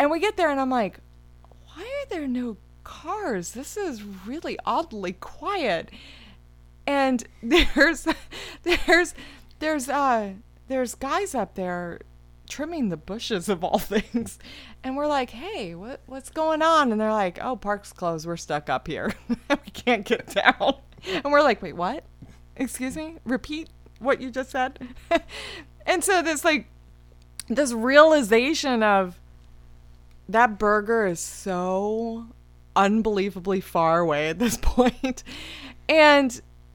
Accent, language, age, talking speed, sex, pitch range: American, English, 30-49, 135 wpm, female, 175-260 Hz